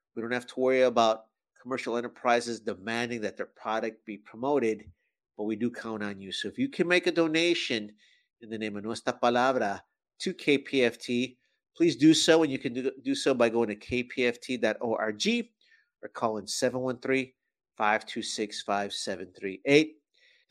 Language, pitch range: English, 110-140 Hz